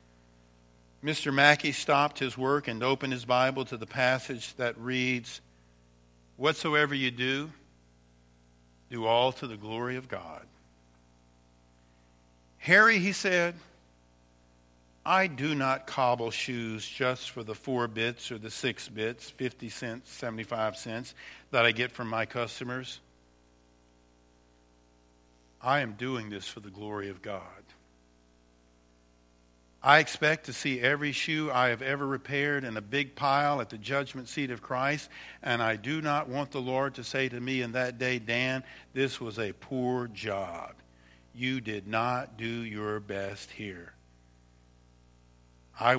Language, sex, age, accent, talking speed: English, male, 50-69, American, 140 wpm